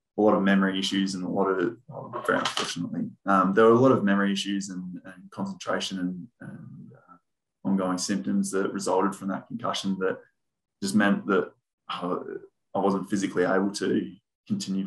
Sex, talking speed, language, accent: male, 175 wpm, English, Australian